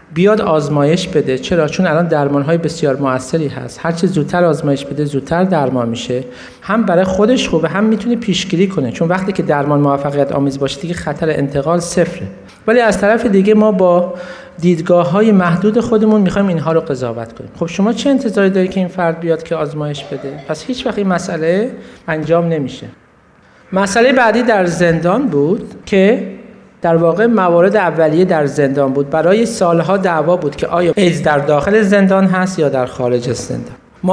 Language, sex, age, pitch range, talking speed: Persian, male, 50-69, 145-190 Hz, 175 wpm